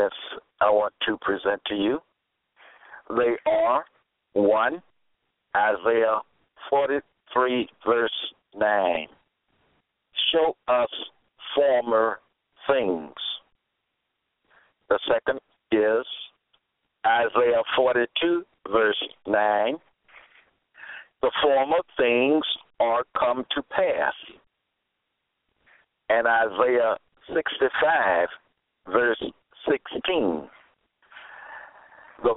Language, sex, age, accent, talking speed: English, male, 60-79, American, 70 wpm